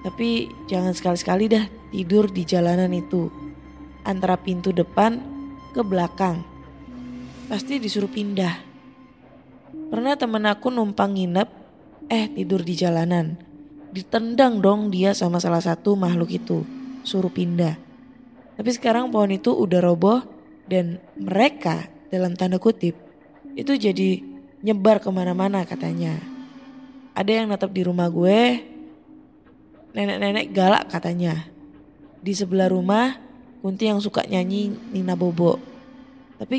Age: 20-39